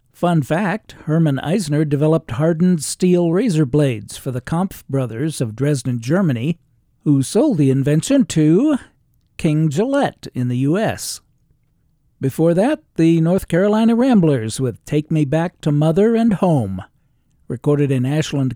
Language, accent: English, American